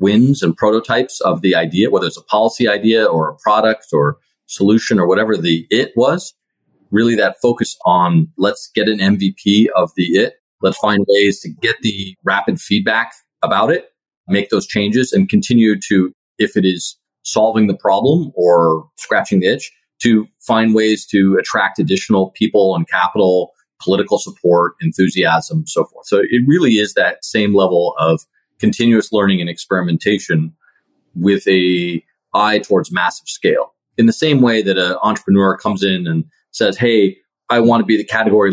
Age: 30-49